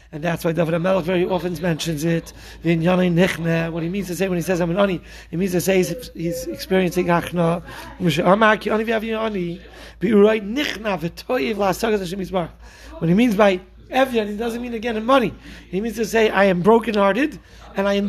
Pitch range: 170-205 Hz